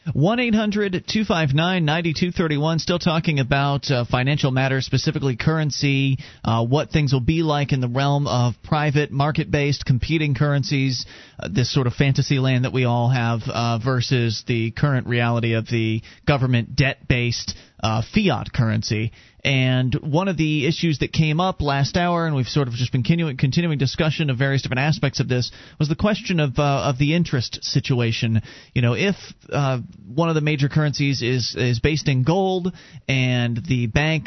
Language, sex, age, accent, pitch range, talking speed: English, male, 40-59, American, 125-155 Hz, 185 wpm